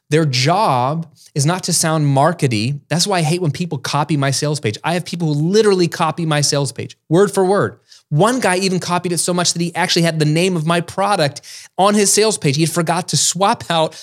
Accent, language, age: American, English, 20-39